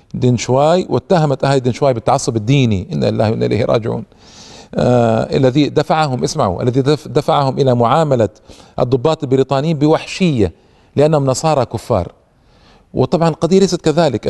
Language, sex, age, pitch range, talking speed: Arabic, male, 50-69, 115-150 Hz, 120 wpm